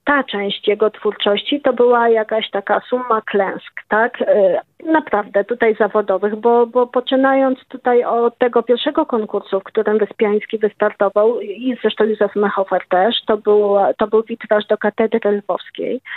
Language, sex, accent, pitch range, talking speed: Polish, female, native, 205-235 Hz, 140 wpm